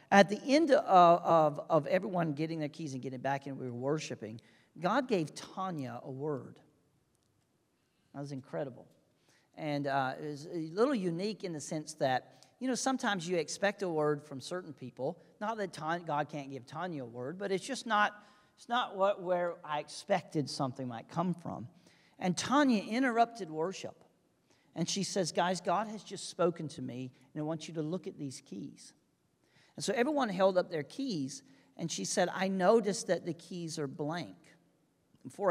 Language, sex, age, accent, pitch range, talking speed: English, male, 40-59, American, 145-195 Hz, 185 wpm